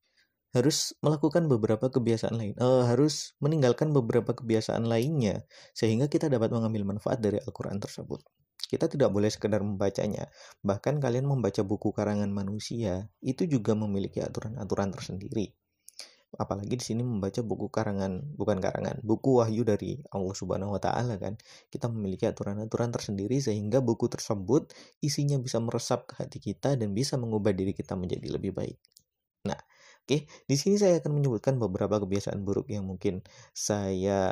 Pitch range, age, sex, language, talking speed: 100-125 Hz, 30-49, male, Indonesian, 150 wpm